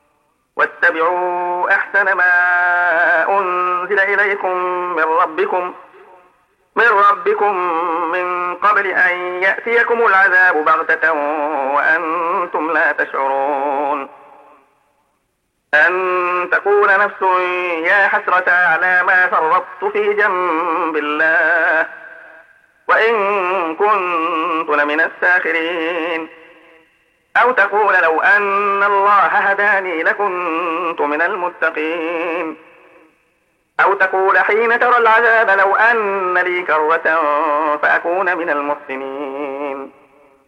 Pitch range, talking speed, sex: 160-195 Hz, 80 wpm, male